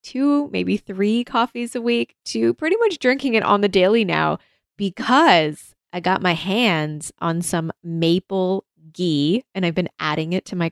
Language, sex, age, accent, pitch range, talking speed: English, female, 20-39, American, 160-205 Hz, 175 wpm